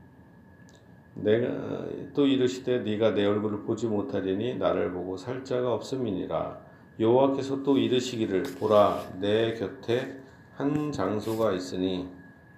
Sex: male